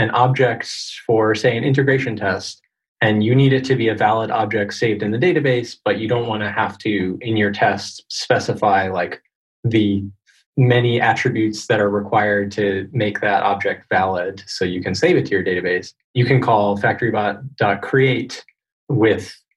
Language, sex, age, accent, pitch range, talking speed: English, male, 20-39, American, 100-130 Hz, 170 wpm